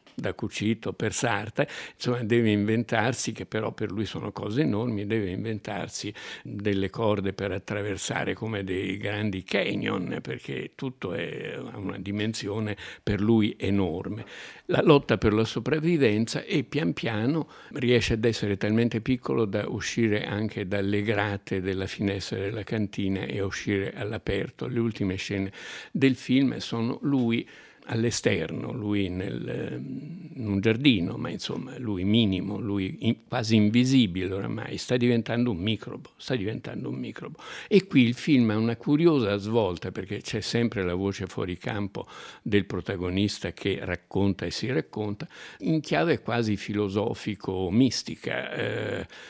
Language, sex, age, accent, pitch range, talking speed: Italian, male, 60-79, native, 100-120 Hz, 140 wpm